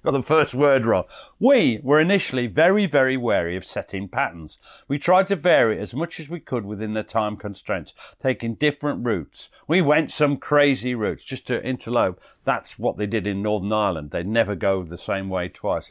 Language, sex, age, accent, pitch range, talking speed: English, male, 50-69, British, 110-165 Hz, 195 wpm